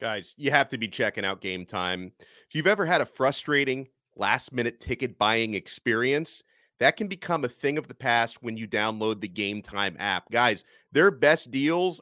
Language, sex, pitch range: English, male, 115-155 Hz